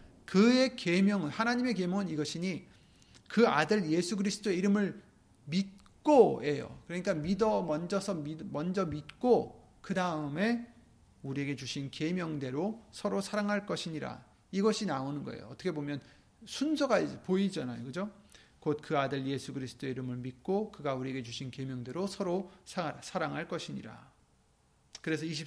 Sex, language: male, Korean